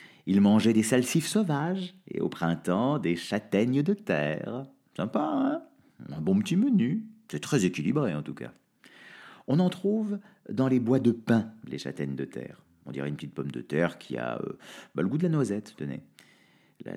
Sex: male